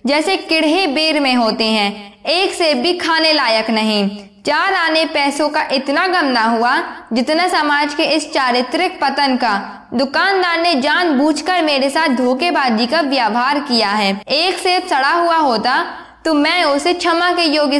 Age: 20-39